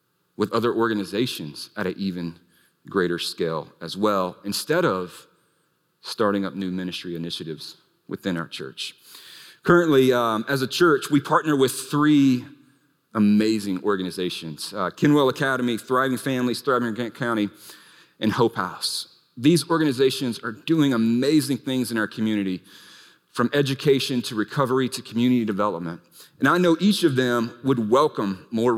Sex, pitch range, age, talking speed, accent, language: male, 100-135 Hz, 40-59, 140 wpm, American, English